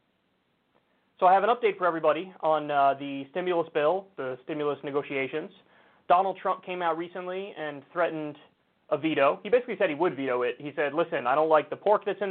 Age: 20-39